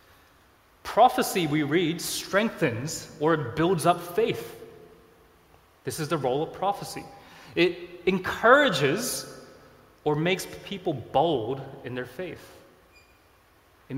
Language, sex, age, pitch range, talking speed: English, male, 20-39, 130-180 Hz, 105 wpm